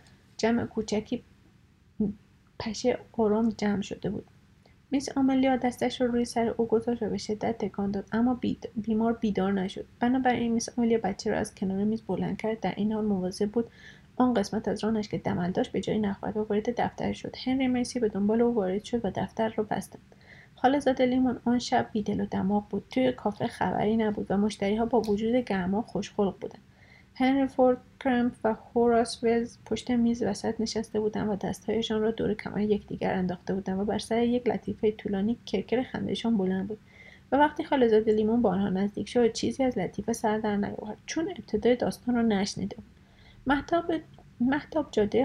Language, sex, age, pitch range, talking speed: Persian, female, 30-49, 205-240 Hz, 175 wpm